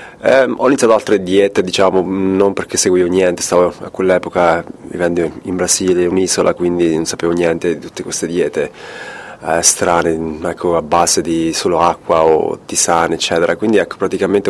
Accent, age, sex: native, 20-39, male